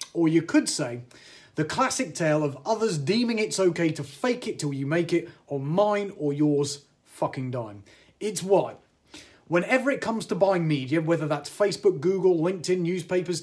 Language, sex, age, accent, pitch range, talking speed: English, male, 30-49, British, 140-185 Hz, 175 wpm